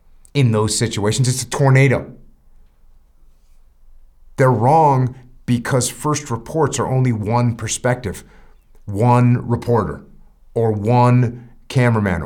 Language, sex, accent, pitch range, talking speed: English, male, American, 100-145 Hz, 100 wpm